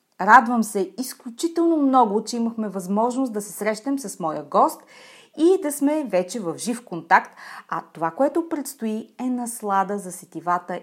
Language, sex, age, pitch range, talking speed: Bulgarian, female, 30-49, 195-270 Hz, 155 wpm